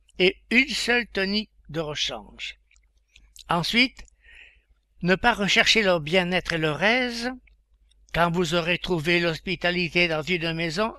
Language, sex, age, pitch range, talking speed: French, male, 60-79, 170-220 Hz, 125 wpm